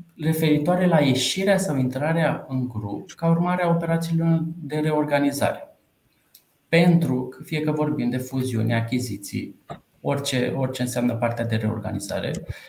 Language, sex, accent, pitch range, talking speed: Romanian, male, native, 125-170 Hz, 130 wpm